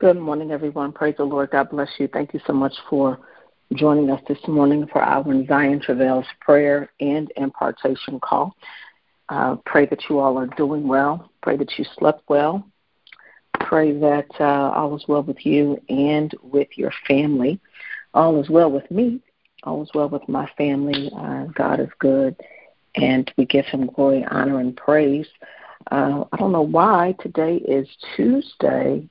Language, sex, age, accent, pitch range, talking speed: English, female, 50-69, American, 135-150 Hz, 170 wpm